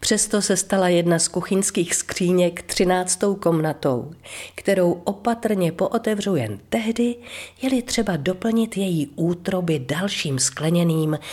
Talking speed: 110 wpm